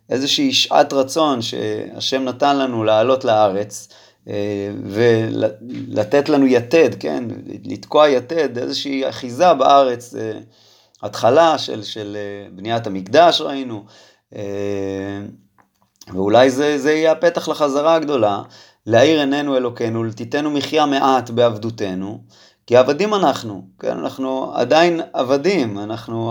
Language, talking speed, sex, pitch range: Hebrew, 115 wpm, male, 110-150 Hz